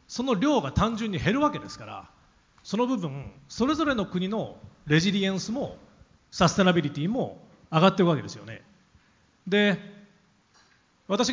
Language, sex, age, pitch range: Japanese, male, 40-59, 155-235 Hz